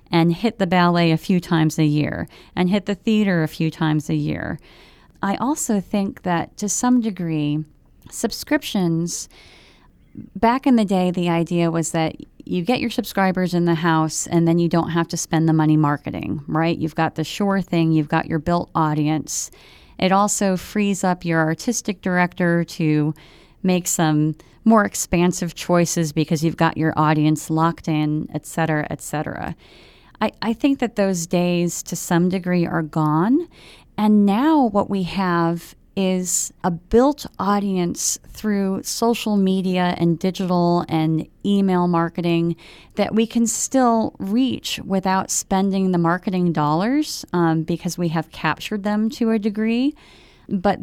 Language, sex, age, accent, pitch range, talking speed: English, female, 30-49, American, 160-205 Hz, 155 wpm